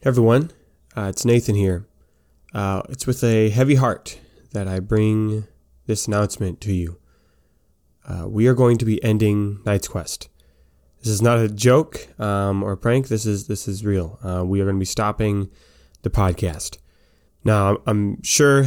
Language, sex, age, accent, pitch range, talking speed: English, male, 20-39, American, 100-125 Hz, 170 wpm